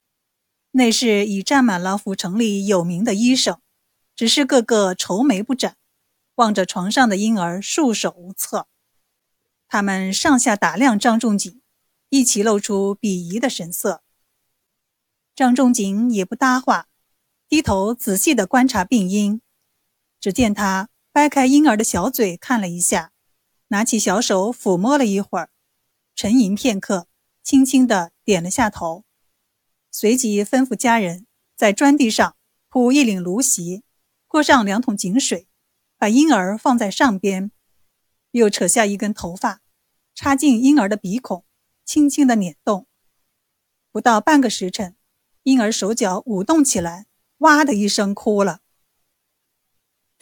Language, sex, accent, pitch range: Chinese, female, native, 195-255 Hz